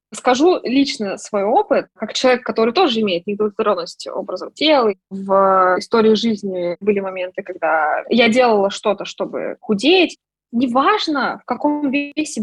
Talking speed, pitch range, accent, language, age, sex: 130 wpm, 200-250 Hz, native, Russian, 20-39, female